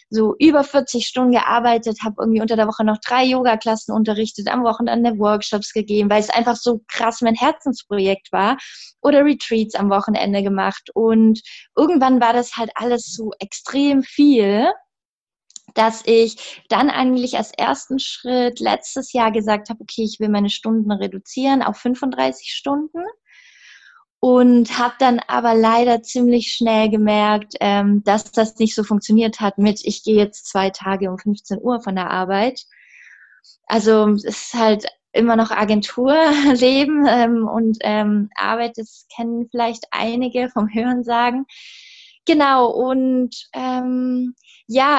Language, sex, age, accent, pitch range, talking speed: German, female, 20-39, German, 215-255 Hz, 145 wpm